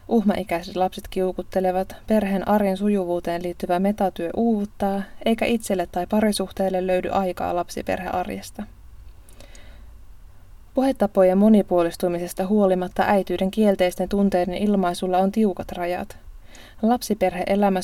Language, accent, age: Finnish, native, 20-39